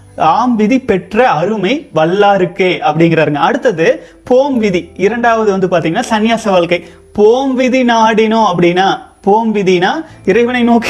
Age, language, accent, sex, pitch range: 30-49, Tamil, native, male, 175-240 Hz